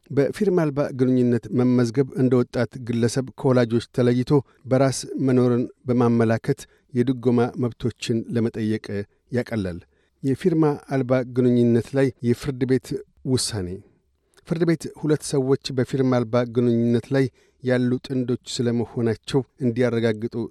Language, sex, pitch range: Amharic, male, 115-135 Hz